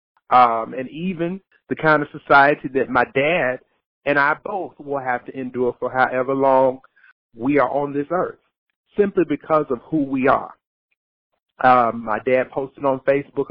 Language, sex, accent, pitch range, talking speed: English, male, American, 125-150 Hz, 165 wpm